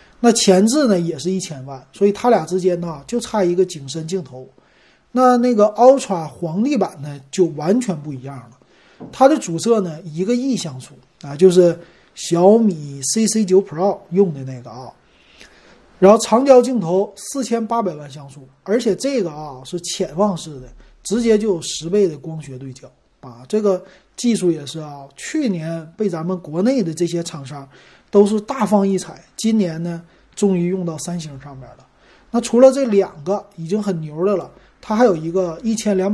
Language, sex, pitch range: Chinese, male, 155-210 Hz